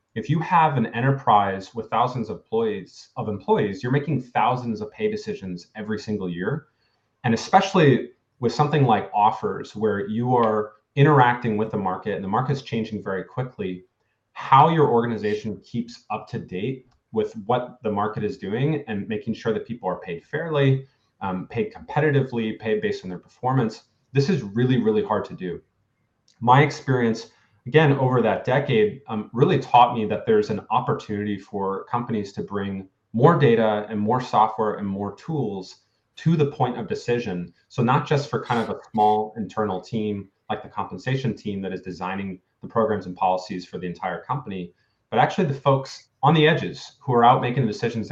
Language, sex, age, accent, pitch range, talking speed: English, male, 30-49, American, 105-140 Hz, 180 wpm